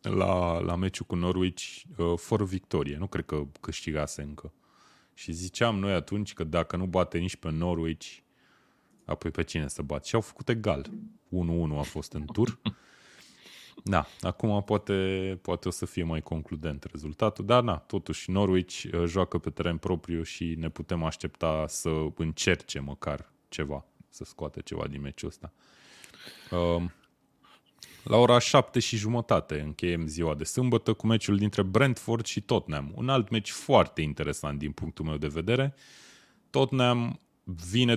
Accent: native